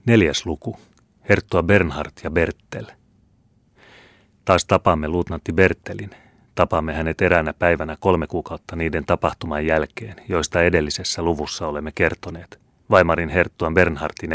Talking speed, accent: 115 wpm, native